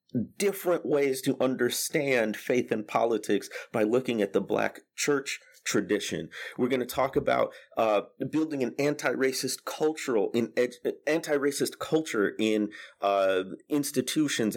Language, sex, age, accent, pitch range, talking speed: English, male, 30-49, American, 105-140 Hz, 130 wpm